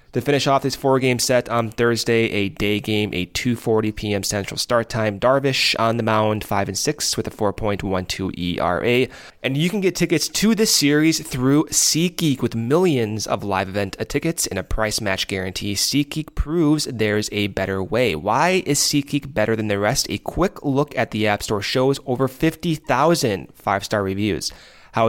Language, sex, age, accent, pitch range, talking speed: English, male, 20-39, American, 105-140 Hz, 180 wpm